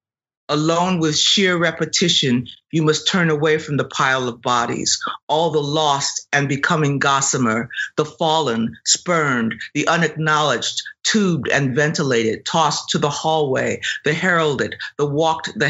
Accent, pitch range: American, 130-155 Hz